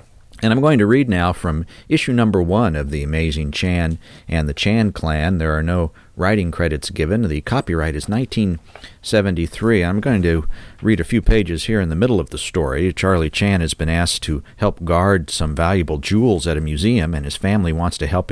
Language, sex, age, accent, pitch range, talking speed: English, male, 50-69, American, 80-110 Hz, 205 wpm